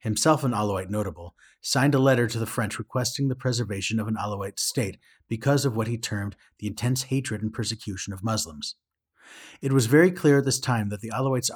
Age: 30-49